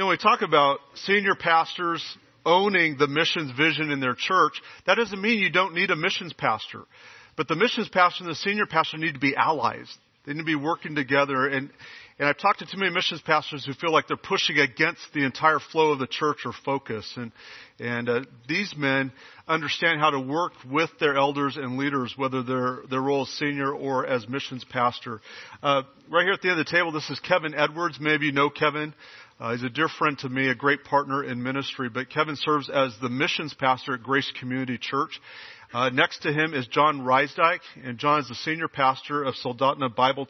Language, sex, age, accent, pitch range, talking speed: English, male, 40-59, American, 130-155 Hz, 215 wpm